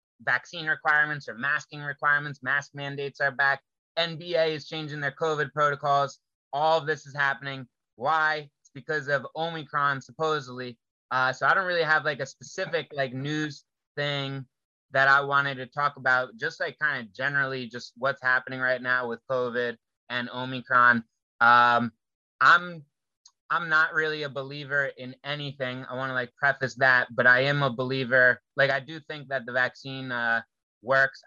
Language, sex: English, male